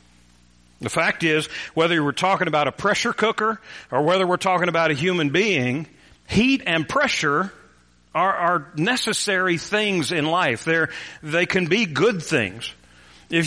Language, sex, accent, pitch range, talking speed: English, male, American, 135-185 Hz, 145 wpm